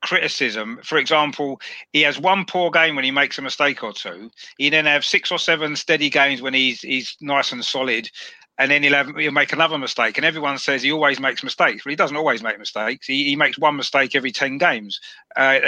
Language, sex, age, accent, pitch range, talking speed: English, male, 40-59, British, 130-160 Hz, 230 wpm